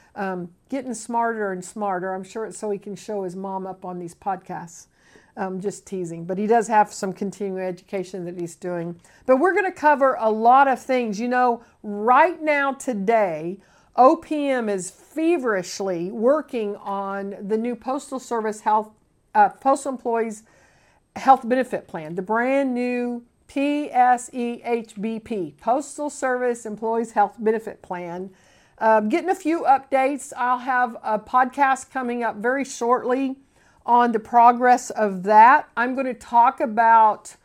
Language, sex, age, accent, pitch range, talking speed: English, female, 50-69, American, 205-250 Hz, 150 wpm